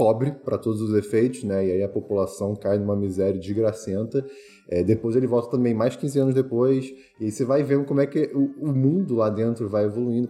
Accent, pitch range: Brazilian, 110-140 Hz